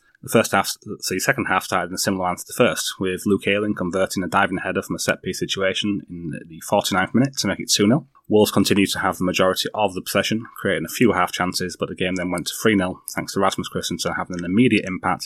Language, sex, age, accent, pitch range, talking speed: English, male, 20-39, British, 90-105 Hz, 240 wpm